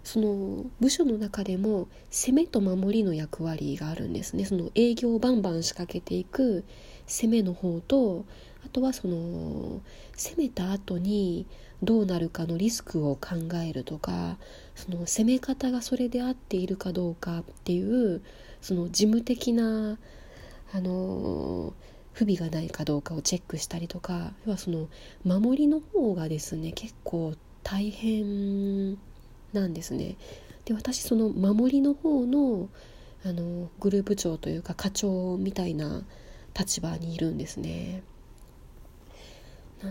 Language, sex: Japanese, female